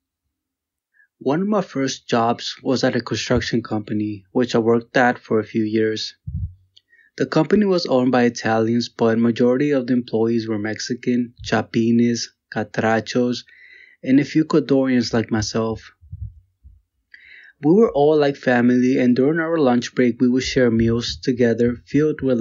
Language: English